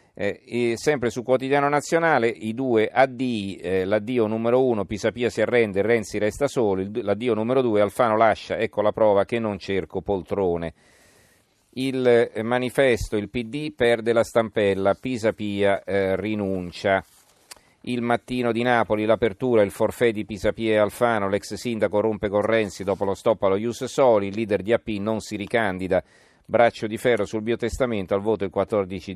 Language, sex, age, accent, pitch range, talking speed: Italian, male, 40-59, native, 100-120 Hz, 165 wpm